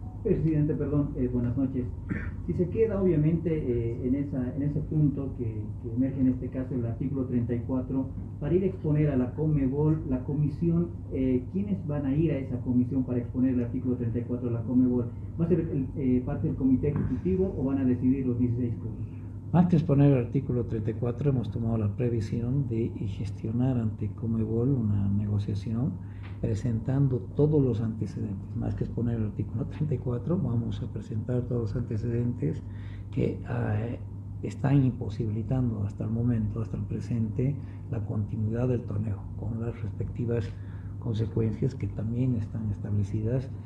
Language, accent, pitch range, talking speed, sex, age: Spanish, Mexican, 105-130 Hz, 165 wpm, male, 40-59